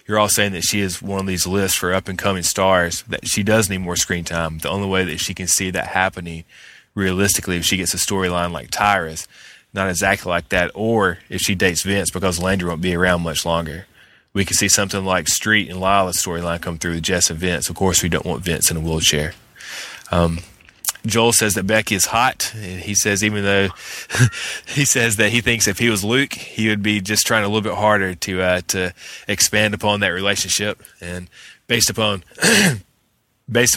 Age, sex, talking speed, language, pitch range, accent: 20-39, male, 210 wpm, English, 90-105 Hz, American